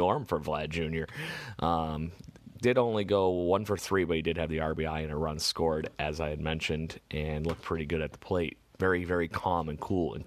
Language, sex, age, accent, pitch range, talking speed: English, male, 30-49, American, 80-95 Hz, 220 wpm